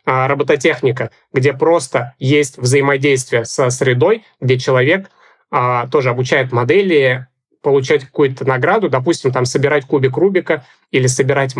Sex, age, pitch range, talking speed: male, 30-49, 135-160 Hz, 115 wpm